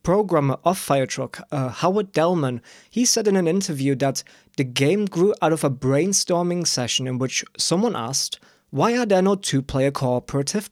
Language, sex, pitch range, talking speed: English, male, 135-185 Hz, 160 wpm